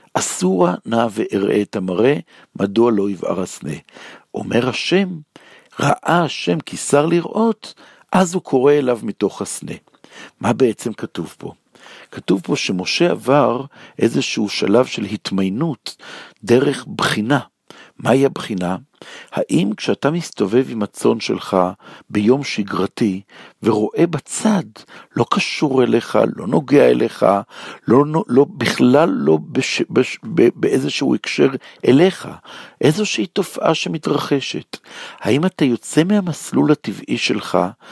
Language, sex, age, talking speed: Hebrew, male, 60-79, 110 wpm